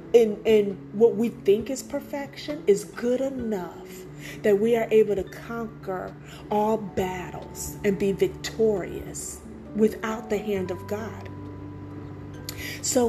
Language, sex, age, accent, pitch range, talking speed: English, female, 40-59, American, 140-235 Hz, 125 wpm